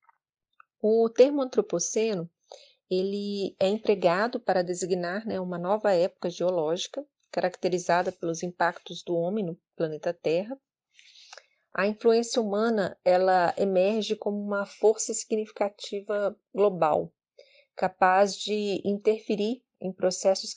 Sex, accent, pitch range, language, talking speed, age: female, Brazilian, 180-215 Hz, Portuguese, 100 wpm, 30-49